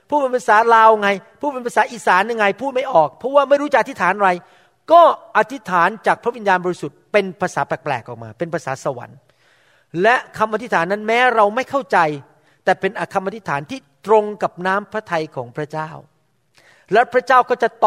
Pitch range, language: 150-210 Hz, Thai